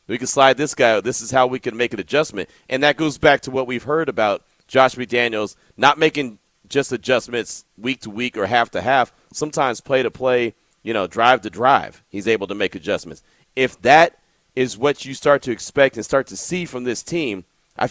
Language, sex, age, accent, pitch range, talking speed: English, male, 40-59, American, 130-180 Hz, 220 wpm